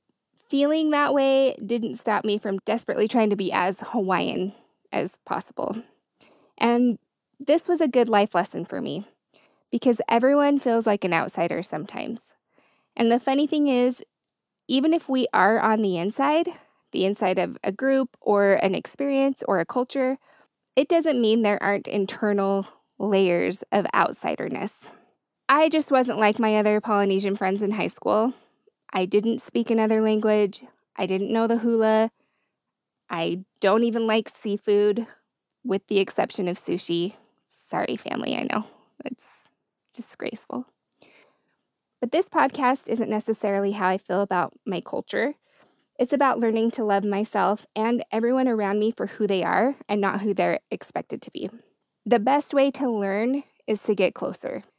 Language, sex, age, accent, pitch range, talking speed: English, female, 20-39, American, 200-260 Hz, 155 wpm